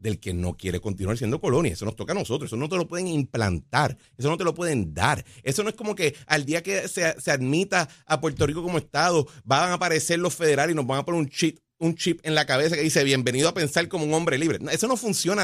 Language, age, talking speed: Spanish, 30-49, 270 wpm